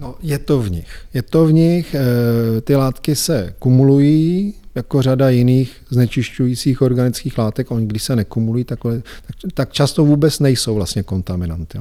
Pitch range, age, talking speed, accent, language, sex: 115-145 Hz, 40-59, 160 wpm, native, Czech, male